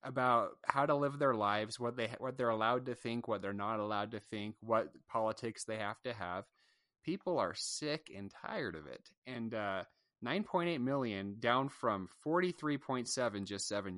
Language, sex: English, male